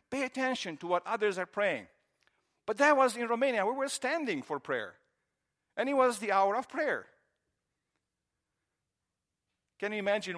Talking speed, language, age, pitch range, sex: 155 wpm, English, 50-69, 160-210 Hz, male